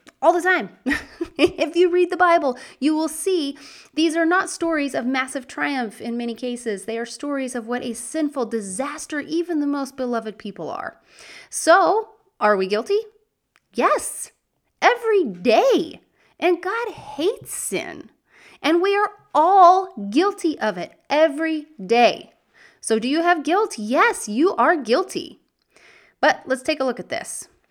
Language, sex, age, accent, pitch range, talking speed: English, female, 30-49, American, 220-330 Hz, 155 wpm